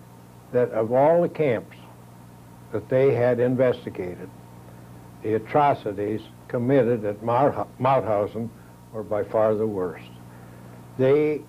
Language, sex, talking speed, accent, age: English, male, 105 wpm, American, 60-79